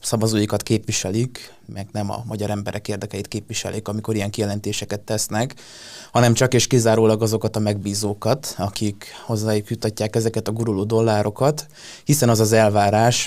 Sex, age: male, 20-39